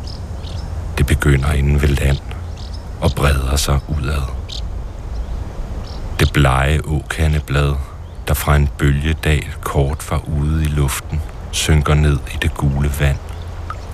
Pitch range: 70-80 Hz